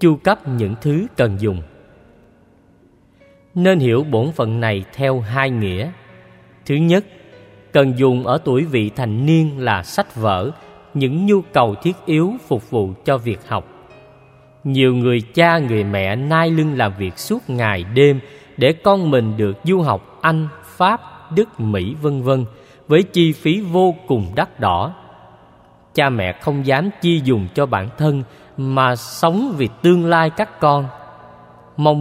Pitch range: 115-165 Hz